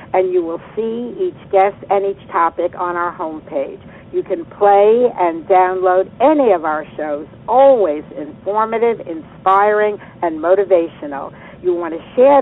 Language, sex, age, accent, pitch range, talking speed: English, female, 60-79, American, 175-220 Hz, 145 wpm